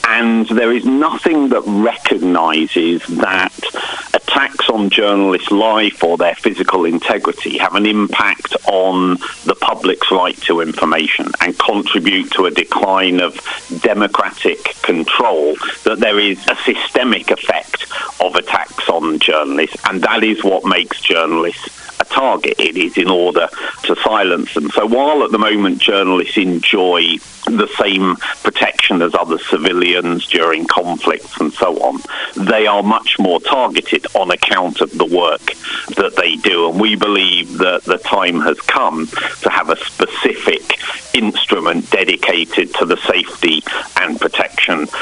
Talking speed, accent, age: 140 wpm, British, 50-69